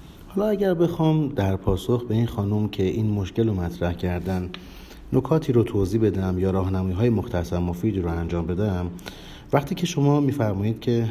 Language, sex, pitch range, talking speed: Persian, male, 90-115 Hz, 160 wpm